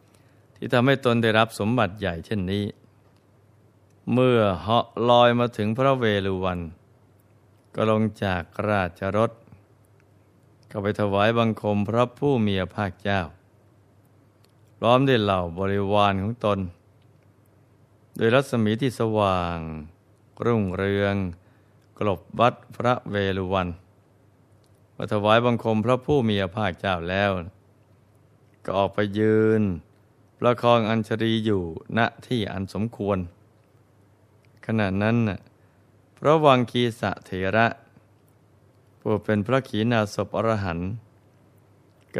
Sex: male